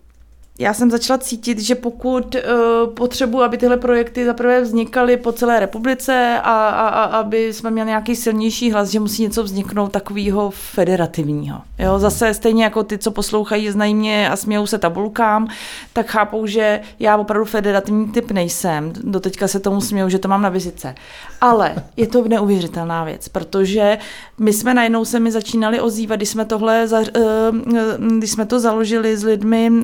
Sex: female